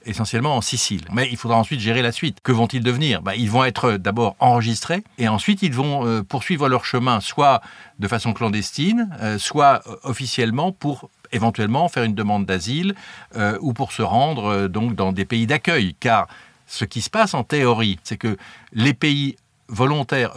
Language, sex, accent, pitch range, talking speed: French, male, French, 105-140 Hz, 180 wpm